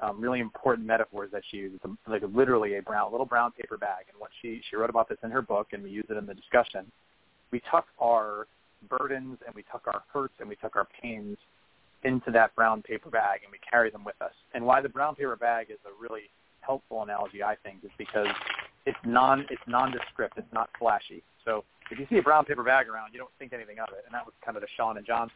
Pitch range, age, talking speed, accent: 110-125 Hz, 30-49, 240 wpm, American